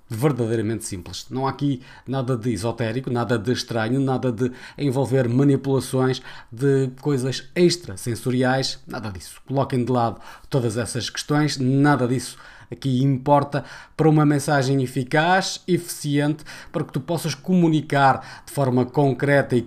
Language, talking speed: Portuguese, 135 wpm